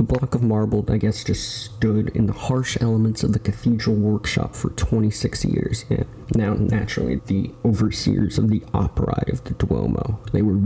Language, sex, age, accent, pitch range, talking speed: English, male, 30-49, American, 105-115 Hz, 180 wpm